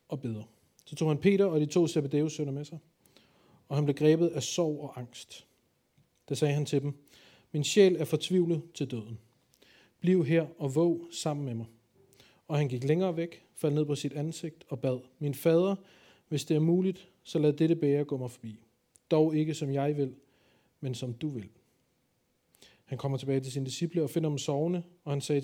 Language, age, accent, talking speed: Danish, 40-59, native, 205 wpm